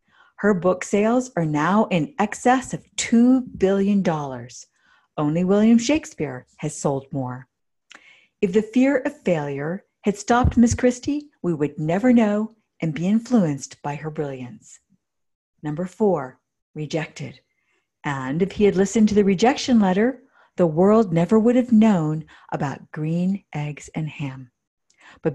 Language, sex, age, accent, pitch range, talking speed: English, female, 50-69, American, 155-220 Hz, 140 wpm